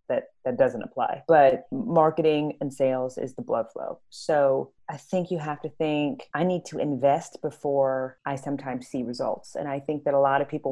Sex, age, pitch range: female, 30-49, 140-165 Hz